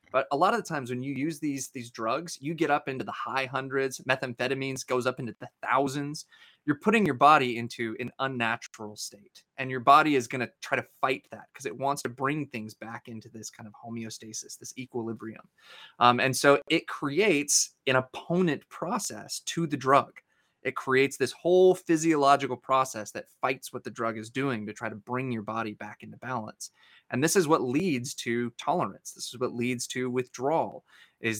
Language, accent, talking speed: English, American, 200 wpm